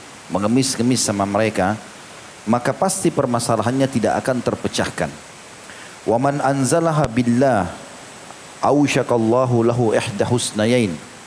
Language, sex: Indonesian, male